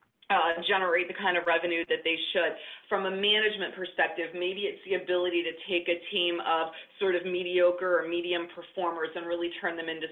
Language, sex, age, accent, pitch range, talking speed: English, female, 40-59, American, 170-230 Hz, 195 wpm